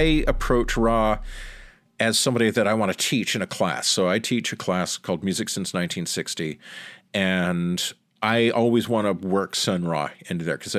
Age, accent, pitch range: 40-59, American, 110-155 Hz